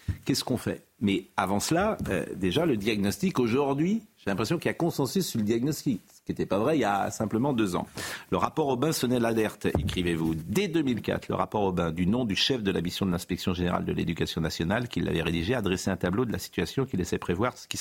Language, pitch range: French, 105-155 Hz